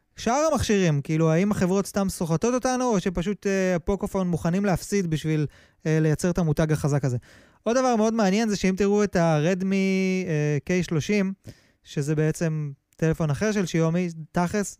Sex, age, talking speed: male, 20-39, 160 wpm